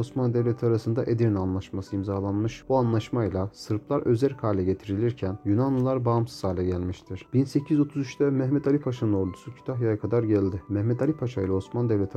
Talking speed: 150 wpm